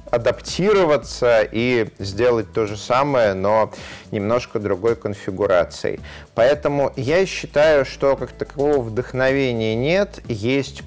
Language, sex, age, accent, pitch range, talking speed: Russian, male, 30-49, native, 105-135 Hz, 105 wpm